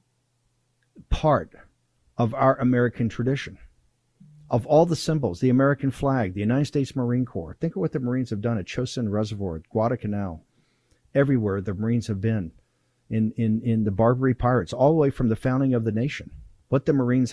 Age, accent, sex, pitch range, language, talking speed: 50-69, American, male, 110-150 Hz, English, 175 wpm